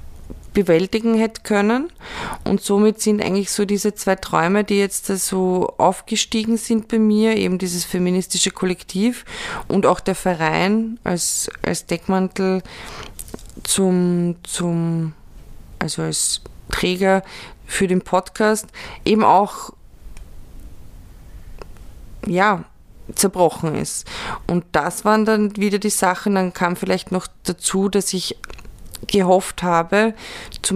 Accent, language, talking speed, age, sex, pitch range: German, German, 115 wpm, 20-39, female, 180-205 Hz